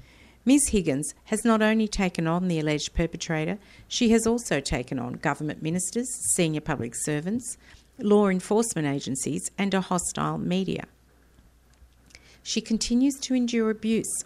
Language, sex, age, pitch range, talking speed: English, female, 50-69, 155-210 Hz, 135 wpm